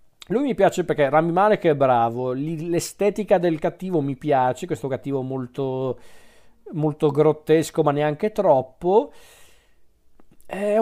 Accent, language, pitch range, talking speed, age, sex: native, Italian, 130-160 Hz, 120 wpm, 40-59, male